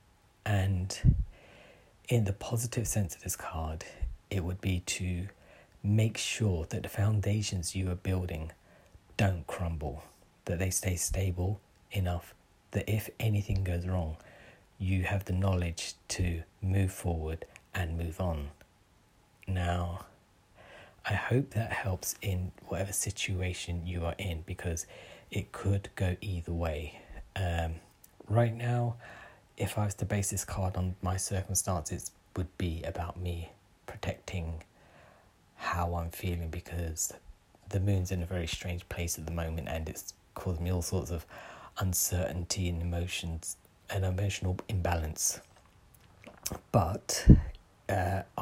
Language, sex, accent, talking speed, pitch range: English, male, British, 135 wpm, 85-100 Hz